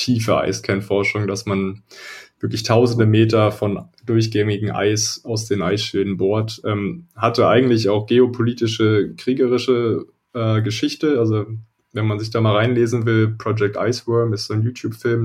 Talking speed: 140 wpm